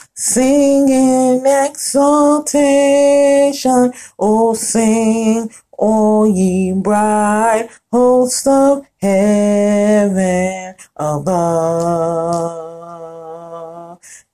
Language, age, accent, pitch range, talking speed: English, 30-49, American, 205-275 Hz, 50 wpm